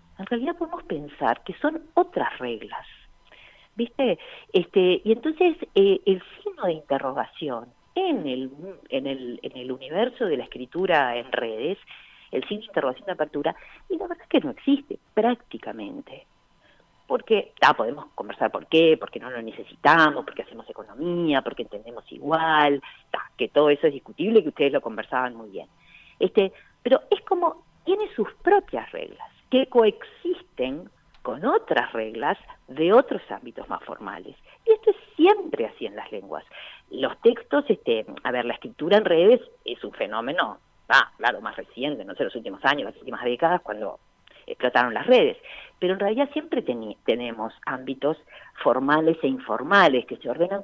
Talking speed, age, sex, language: 165 wpm, 40-59, female, Spanish